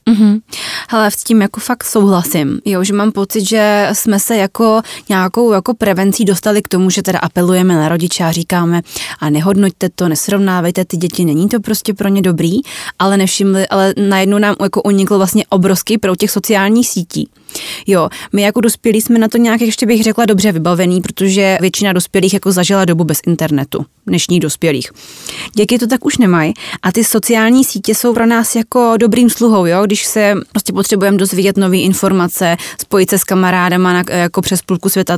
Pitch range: 180-215 Hz